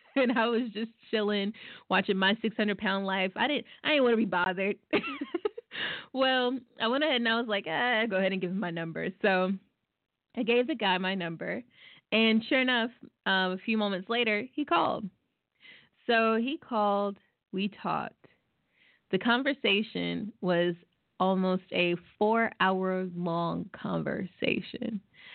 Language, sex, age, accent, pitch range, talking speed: English, female, 20-39, American, 175-220 Hz, 145 wpm